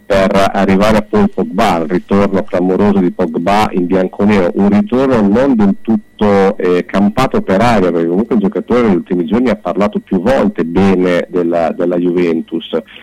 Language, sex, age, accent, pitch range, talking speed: Italian, male, 40-59, native, 90-110 Hz, 165 wpm